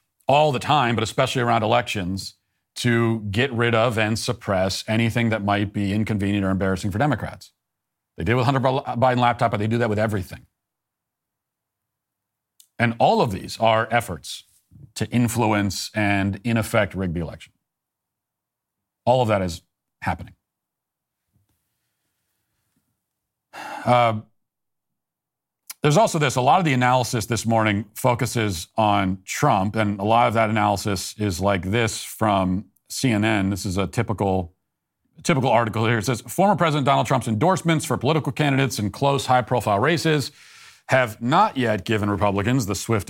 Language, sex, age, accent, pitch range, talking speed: English, male, 40-59, American, 100-125 Hz, 150 wpm